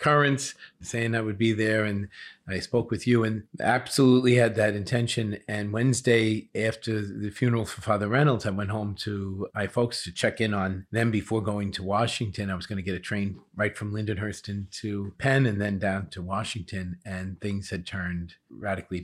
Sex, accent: male, American